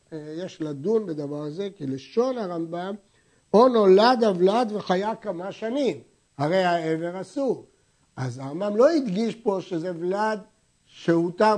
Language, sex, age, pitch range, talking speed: Hebrew, male, 60-79, 170-225 Hz, 125 wpm